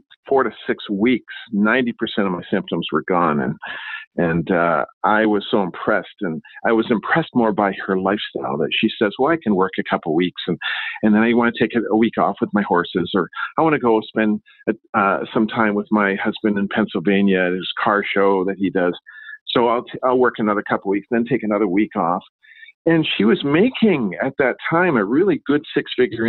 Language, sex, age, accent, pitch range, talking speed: English, male, 50-69, American, 105-155 Hz, 215 wpm